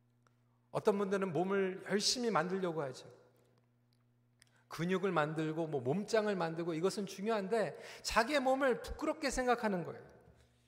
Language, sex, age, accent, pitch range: Korean, male, 40-59, native, 160-250 Hz